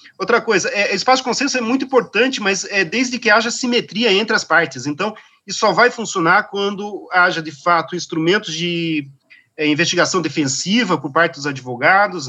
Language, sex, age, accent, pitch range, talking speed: Portuguese, male, 40-59, Brazilian, 150-195 Hz, 175 wpm